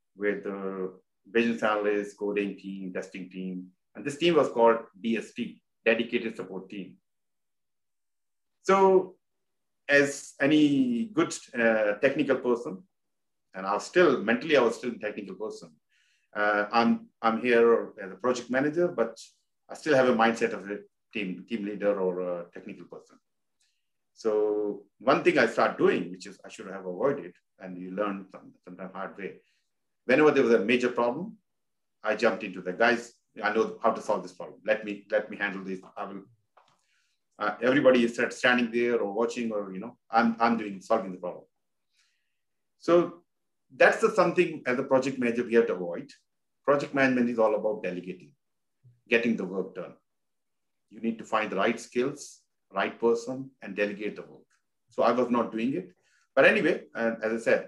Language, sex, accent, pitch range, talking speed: English, male, Indian, 100-125 Hz, 170 wpm